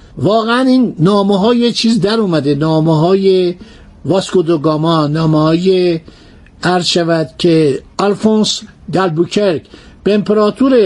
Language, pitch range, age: Persian, 185-230 Hz, 60-79